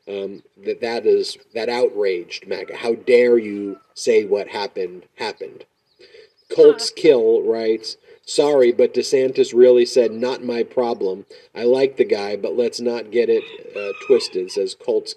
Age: 40-59